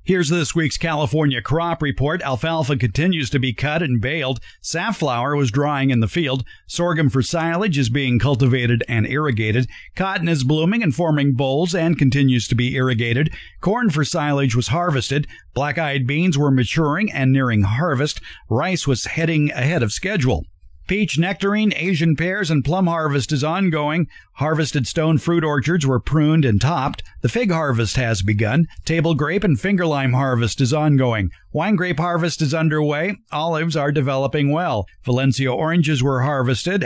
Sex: male